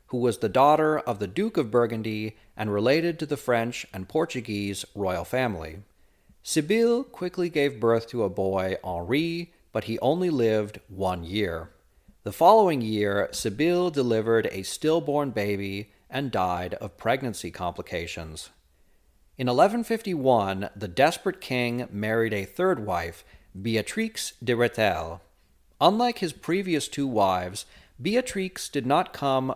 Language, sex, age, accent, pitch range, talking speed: English, male, 40-59, American, 95-145 Hz, 135 wpm